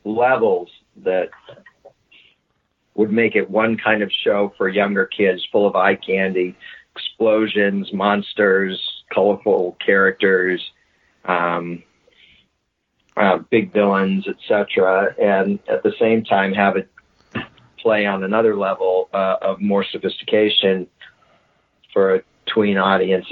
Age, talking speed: 50-69, 115 wpm